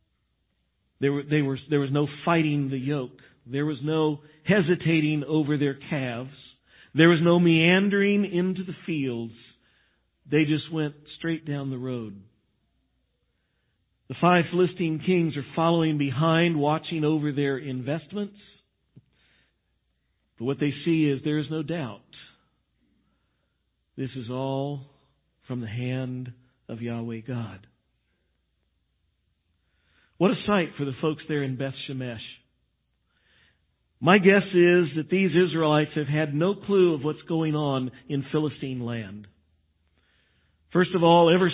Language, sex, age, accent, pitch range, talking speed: English, male, 50-69, American, 125-165 Hz, 125 wpm